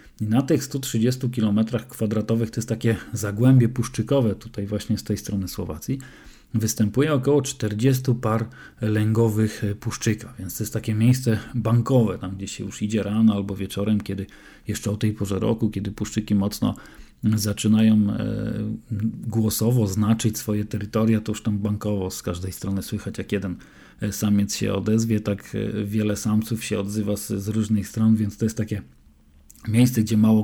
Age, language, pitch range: 40-59, Polish, 105-115 Hz